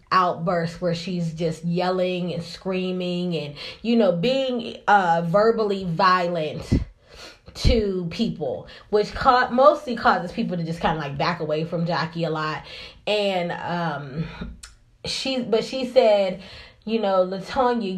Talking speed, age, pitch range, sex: 135 wpm, 20-39, 170-220 Hz, female